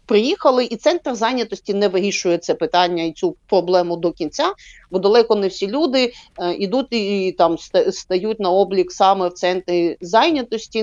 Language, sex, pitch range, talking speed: Ukrainian, female, 185-230 Hz, 165 wpm